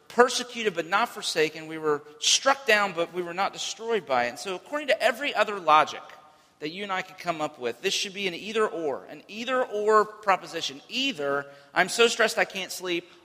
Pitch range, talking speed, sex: 155-225 Hz, 210 wpm, male